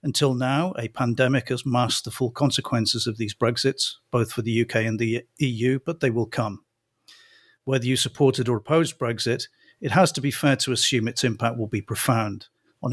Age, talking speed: 50-69, 195 wpm